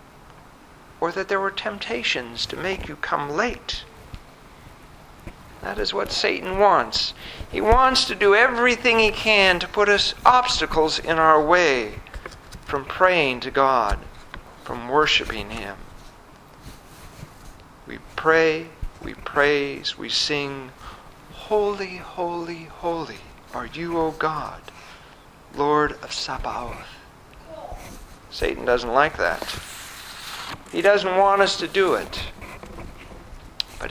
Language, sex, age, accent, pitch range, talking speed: English, male, 50-69, American, 130-185 Hz, 110 wpm